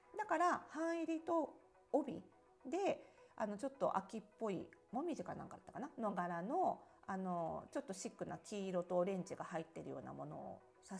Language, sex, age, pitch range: Japanese, female, 40-59, 175-290 Hz